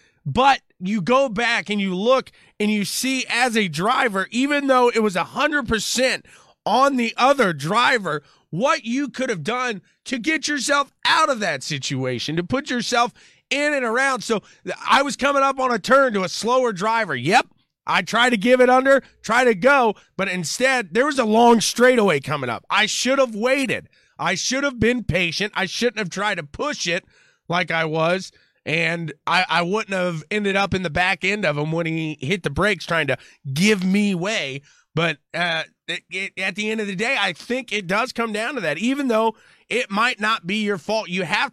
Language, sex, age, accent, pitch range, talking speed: English, male, 30-49, American, 170-245 Hz, 205 wpm